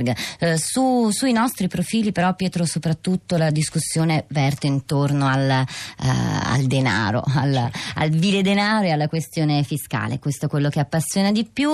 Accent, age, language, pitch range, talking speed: native, 20-39, Italian, 155-190 Hz, 155 wpm